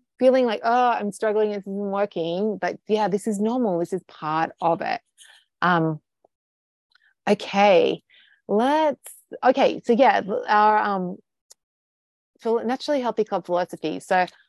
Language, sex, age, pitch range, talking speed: English, female, 30-49, 175-235 Hz, 130 wpm